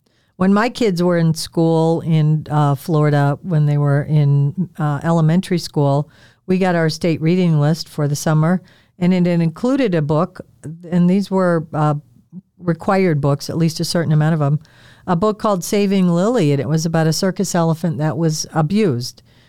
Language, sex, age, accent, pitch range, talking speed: English, female, 50-69, American, 155-190 Hz, 180 wpm